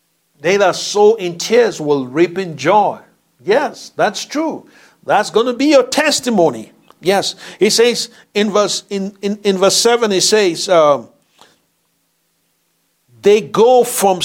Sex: male